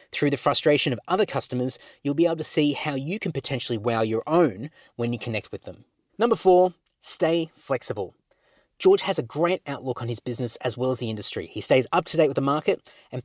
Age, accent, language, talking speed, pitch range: 30-49, Australian, English, 220 wpm, 120-160 Hz